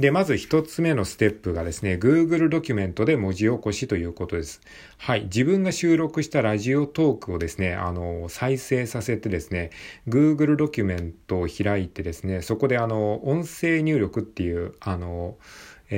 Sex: male